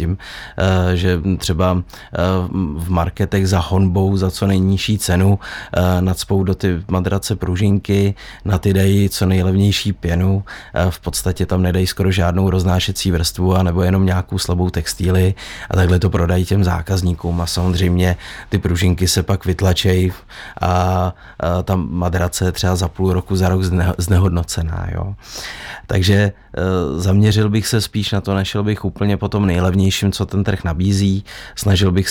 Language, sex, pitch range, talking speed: Czech, male, 90-100 Hz, 145 wpm